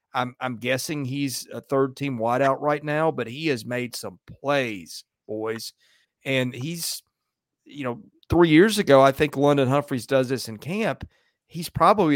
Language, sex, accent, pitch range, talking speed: English, male, American, 115-145 Hz, 165 wpm